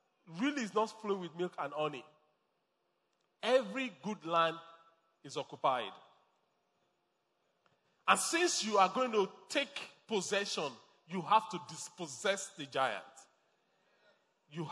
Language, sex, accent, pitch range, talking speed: English, male, Nigerian, 190-270 Hz, 115 wpm